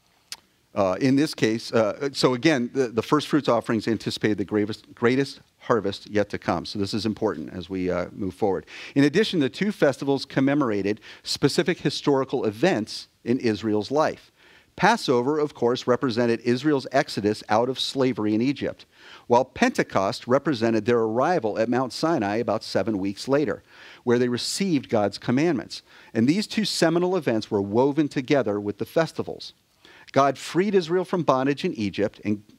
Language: English